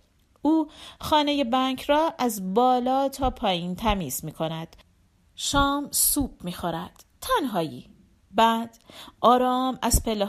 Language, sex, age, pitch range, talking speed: Persian, female, 40-59, 190-270 Hz, 115 wpm